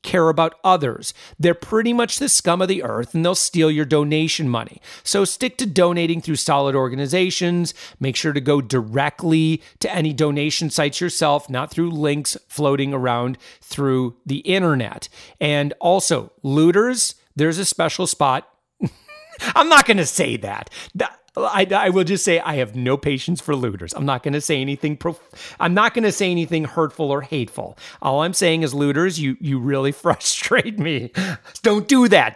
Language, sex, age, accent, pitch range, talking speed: English, male, 40-59, American, 140-185 Hz, 175 wpm